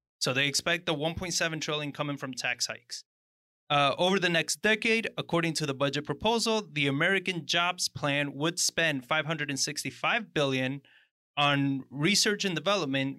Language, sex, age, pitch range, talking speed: English, male, 30-49, 140-175 Hz, 145 wpm